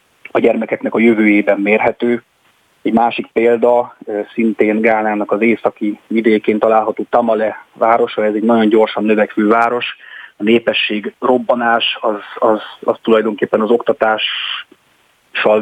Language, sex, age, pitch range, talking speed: Hungarian, male, 30-49, 105-120 Hz, 120 wpm